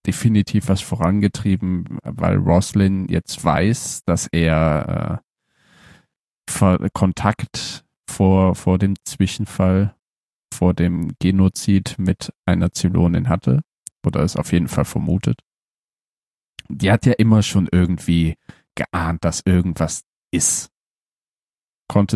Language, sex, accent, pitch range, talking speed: German, male, German, 90-110 Hz, 105 wpm